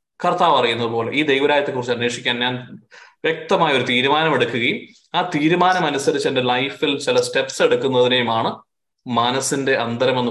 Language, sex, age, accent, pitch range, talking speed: Malayalam, male, 20-39, native, 120-160 Hz, 115 wpm